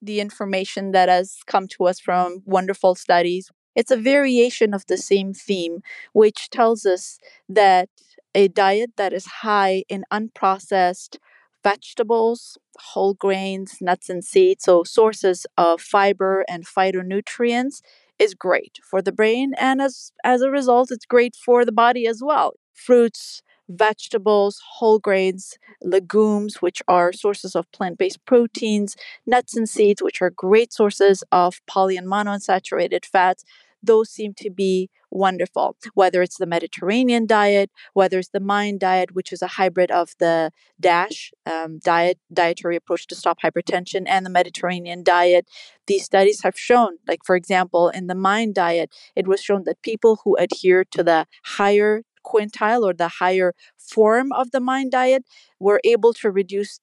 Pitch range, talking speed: 185-230 Hz, 155 wpm